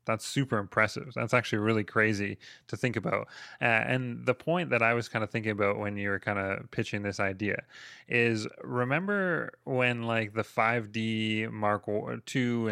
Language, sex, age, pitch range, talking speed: English, male, 20-39, 105-130 Hz, 175 wpm